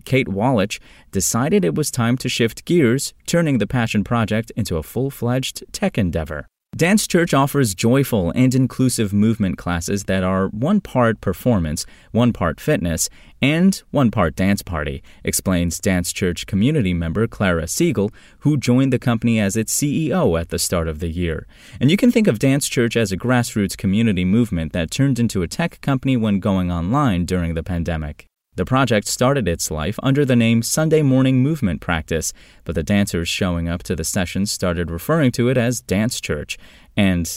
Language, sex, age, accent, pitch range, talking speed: English, male, 30-49, American, 90-130 Hz, 180 wpm